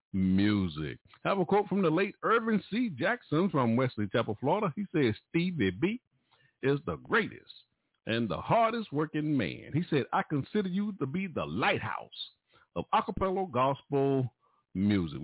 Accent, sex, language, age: American, male, English, 50-69